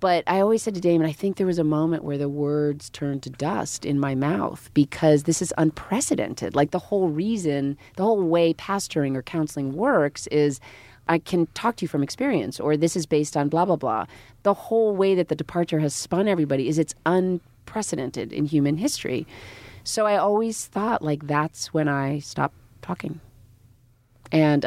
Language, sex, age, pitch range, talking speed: English, female, 30-49, 135-165 Hz, 190 wpm